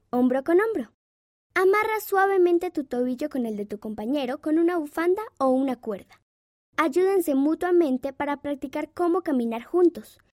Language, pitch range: Spanish, 260-365 Hz